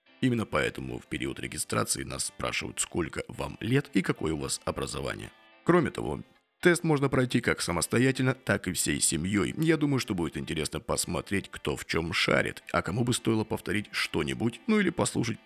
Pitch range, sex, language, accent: 90-130 Hz, male, Russian, native